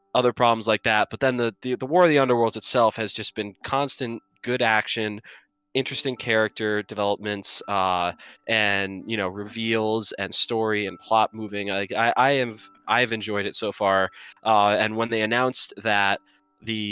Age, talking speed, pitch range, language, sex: 20-39, 175 wpm, 100-115 Hz, English, male